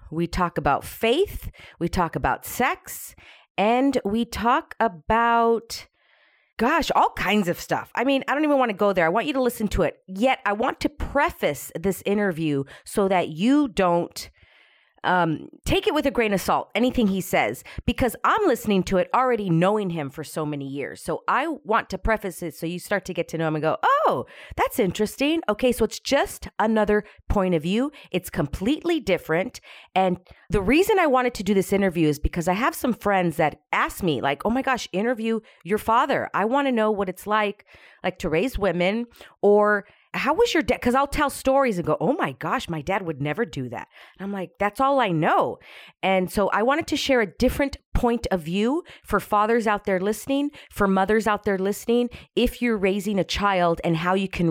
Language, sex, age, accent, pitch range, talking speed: English, female, 40-59, American, 175-240 Hz, 210 wpm